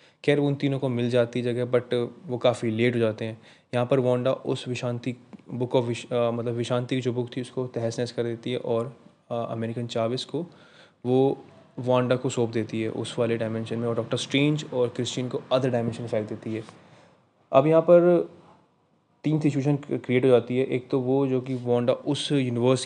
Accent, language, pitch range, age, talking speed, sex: native, Hindi, 120-135 Hz, 20-39, 195 wpm, male